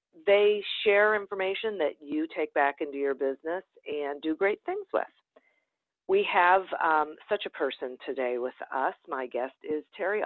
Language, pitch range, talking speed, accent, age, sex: English, 150-215 Hz, 165 wpm, American, 50-69, female